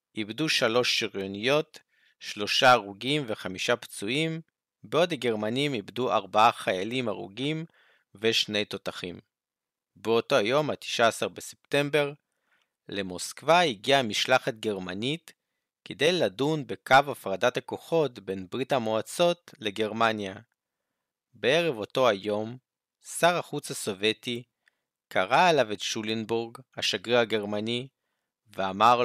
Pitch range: 105-140 Hz